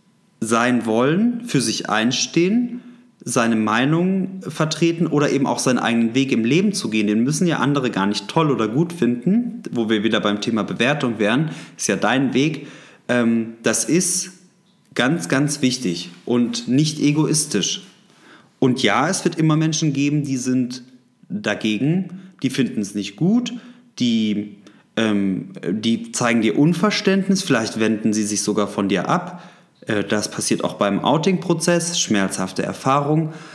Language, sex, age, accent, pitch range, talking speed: German, male, 30-49, German, 110-170 Hz, 145 wpm